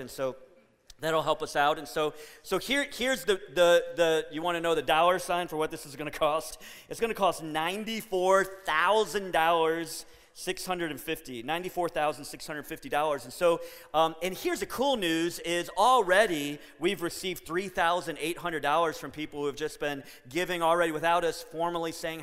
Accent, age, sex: American, 30-49, male